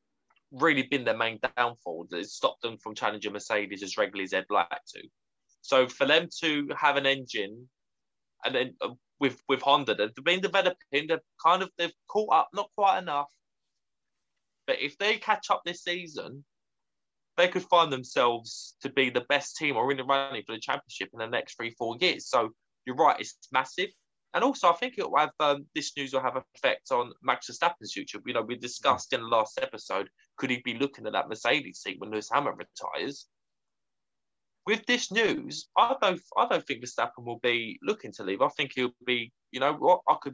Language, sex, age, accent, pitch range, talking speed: English, male, 20-39, British, 125-170 Hz, 200 wpm